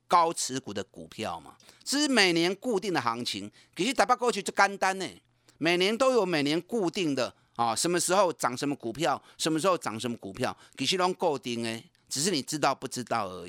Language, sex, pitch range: Chinese, male, 125-190 Hz